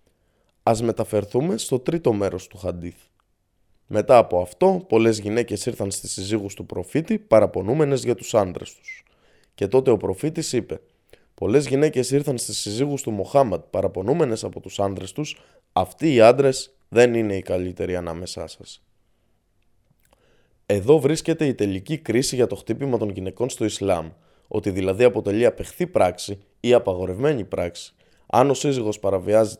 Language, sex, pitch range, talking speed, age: Greek, male, 95-130 Hz, 145 wpm, 20-39